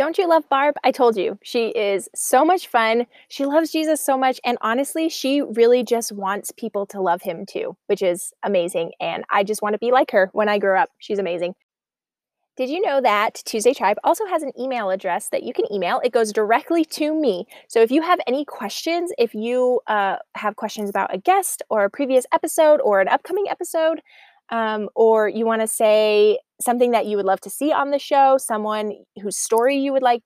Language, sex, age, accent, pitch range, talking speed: English, female, 20-39, American, 210-285 Hz, 215 wpm